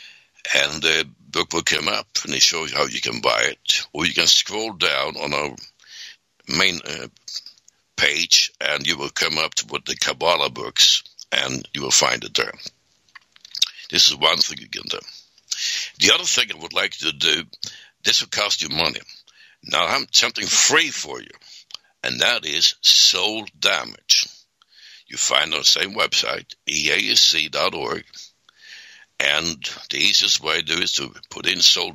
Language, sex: English, male